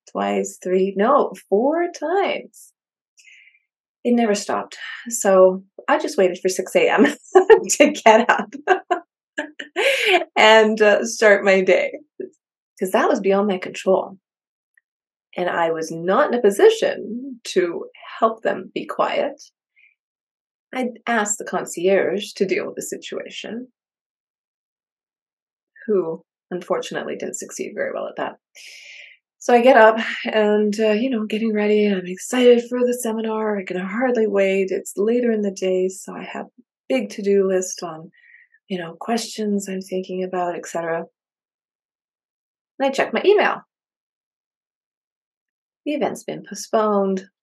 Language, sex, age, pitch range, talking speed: English, female, 30-49, 185-250 Hz, 135 wpm